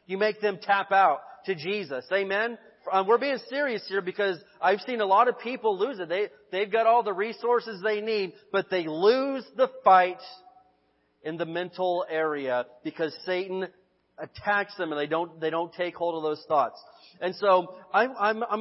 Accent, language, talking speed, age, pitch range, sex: American, English, 185 wpm, 40-59, 165-215 Hz, male